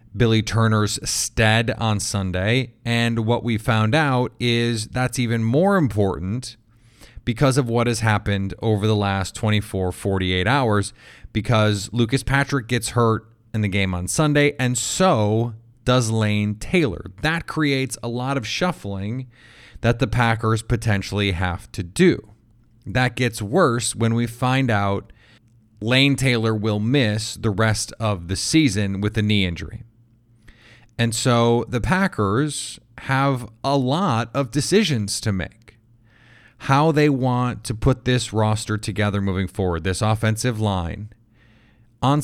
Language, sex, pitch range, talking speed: English, male, 105-125 Hz, 140 wpm